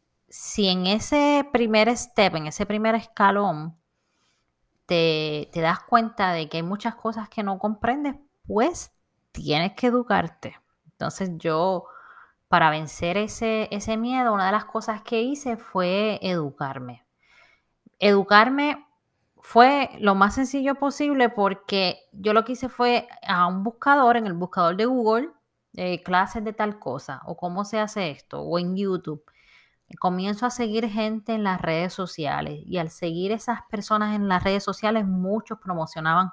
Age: 20-39